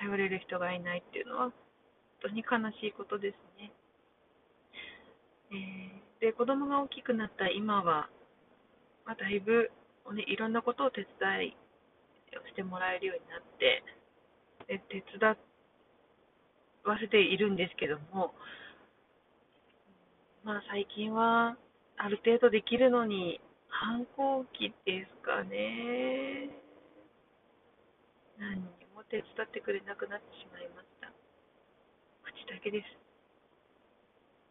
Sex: female